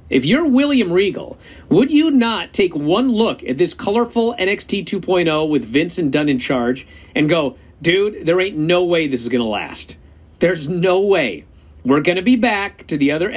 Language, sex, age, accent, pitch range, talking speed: English, male, 50-69, American, 150-245 Hz, 195 wpm